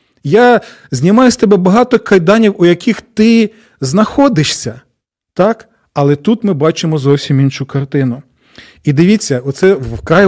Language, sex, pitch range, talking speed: Ukrainian, male, 145-205 Hz, 130 wpm